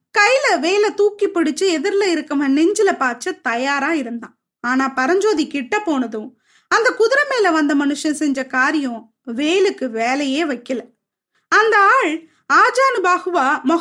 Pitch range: 280-380 Hz